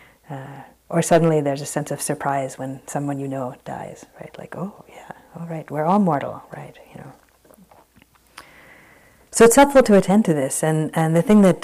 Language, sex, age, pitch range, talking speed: English, female, 40-59, 140-165 Hz, 195 wpm